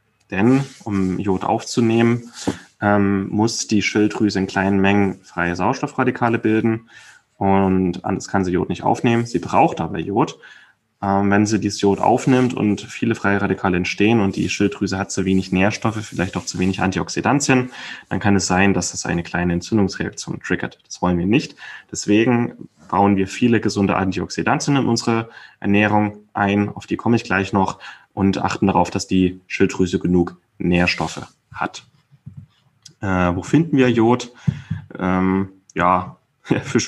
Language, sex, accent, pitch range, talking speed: German, male, German, 95-115 Hz, 155 wpm